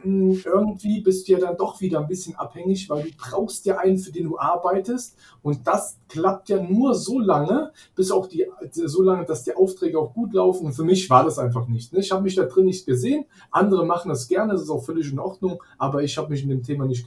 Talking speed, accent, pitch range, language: 245 wpm, German, 130-185 Hz, German